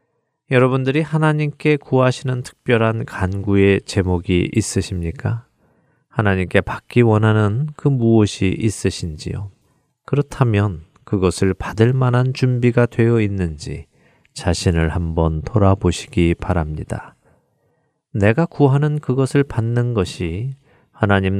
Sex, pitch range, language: male, 95-130 Hz, Korean